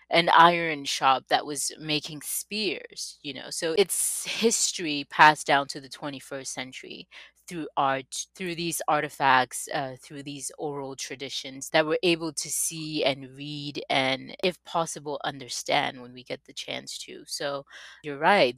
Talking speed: 155 wpm